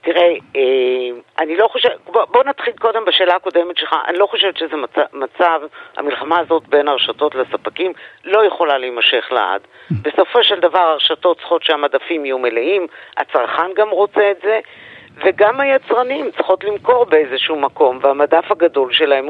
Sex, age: female, 50-69